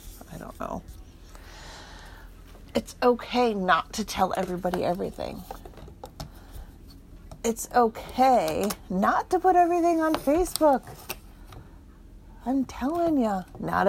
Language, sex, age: English, female, 40-59